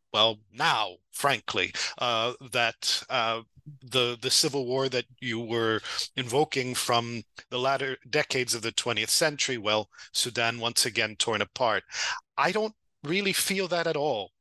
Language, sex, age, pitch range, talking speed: English, male, 40-59, 120-150 Hz, 145 wpm